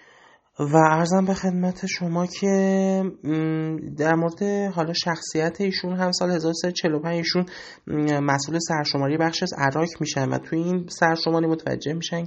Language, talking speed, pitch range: Persian, 130 wpm, 135-165 Hz